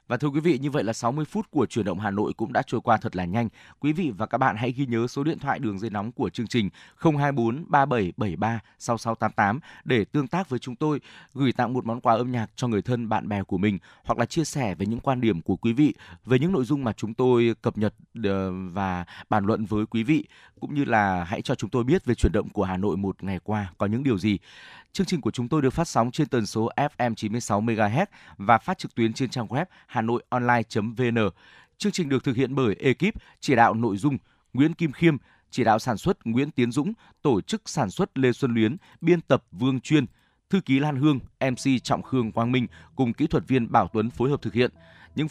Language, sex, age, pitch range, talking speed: Vietnamese, male, 20-39, 110-140 Hz, 240 wpm